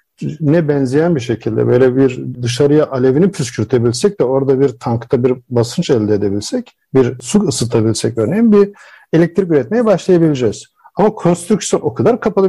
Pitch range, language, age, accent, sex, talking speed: 130-185 Hz, Turkish, 50-69, native, male, 145 wpm